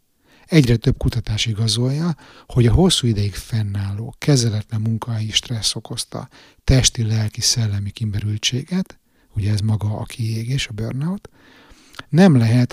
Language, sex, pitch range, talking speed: Hungarian, male, 110-135 Hz, 115 wpm